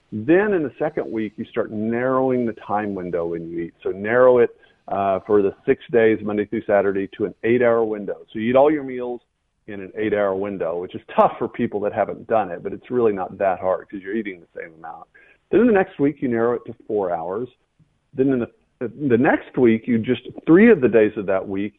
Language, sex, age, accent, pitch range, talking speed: English, male, 40-59, American, 100-135 Hz, 235 wpm